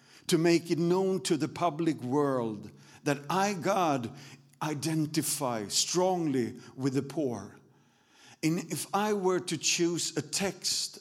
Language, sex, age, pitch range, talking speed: Danish, male, 50-69, 135-175 Hz, 130 wpm